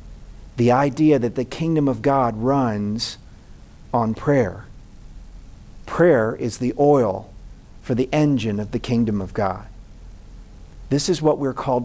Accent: American